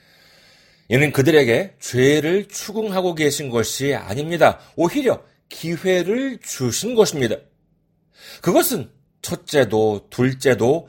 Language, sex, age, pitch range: Korean, male, 40-59, 140-220 Hz